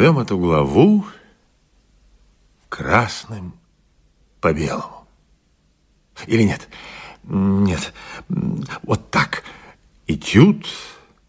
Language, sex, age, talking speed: Russian, male, 50-69, 60 wpm